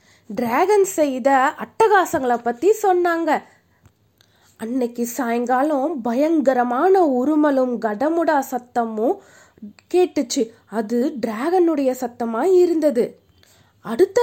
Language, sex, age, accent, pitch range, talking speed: Tamil, female, 20-39, native, 245-355 Hz, 70 wpm